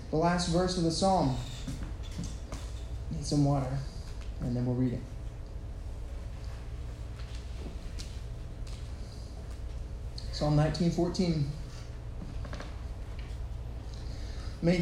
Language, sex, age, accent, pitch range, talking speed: English, male, 20-39, American, 115-150 Hz, 70 wpm